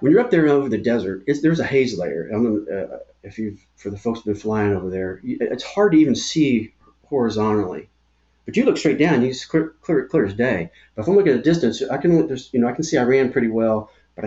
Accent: American